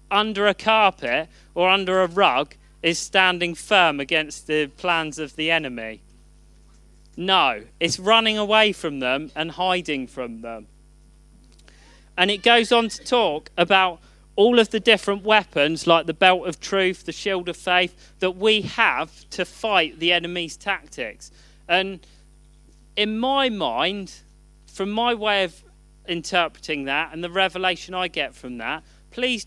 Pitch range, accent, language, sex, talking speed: 150-195 Hz, British, English, male, 150 wpm